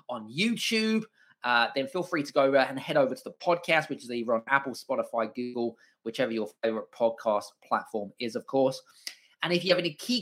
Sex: male